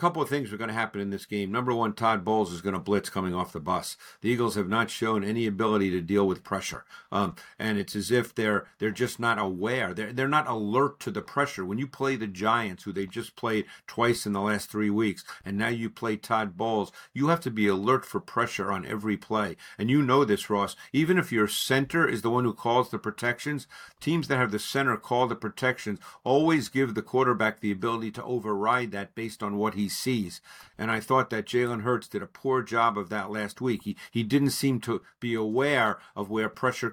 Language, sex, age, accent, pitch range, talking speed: English, male, 50-69, American, 105-125 Hz, 230 wpm